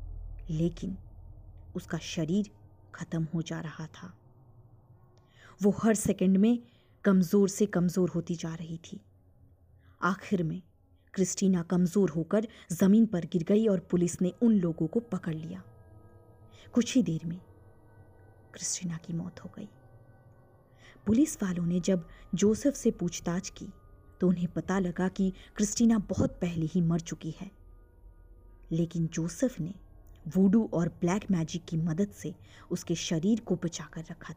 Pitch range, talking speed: 125-190 Hz, 140 wpm